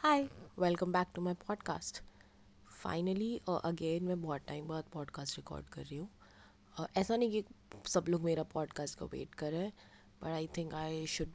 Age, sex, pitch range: 20-39, female, 150-185 Hz